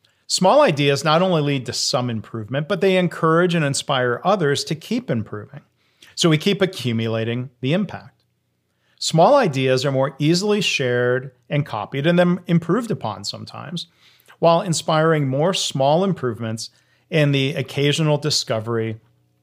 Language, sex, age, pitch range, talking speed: English, male, 40-59, 120-160 Hz, 140 wpm